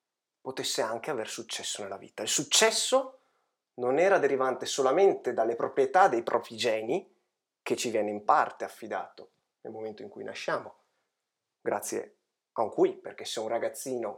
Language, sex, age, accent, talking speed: Italian, male, 30-49, native, 150 wpm